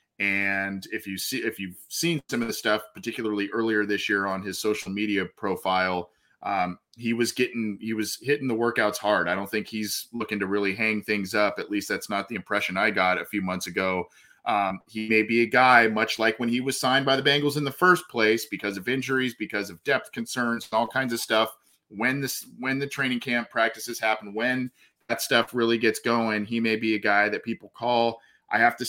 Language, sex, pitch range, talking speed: English, male, 100-120 Hz, 225 wpm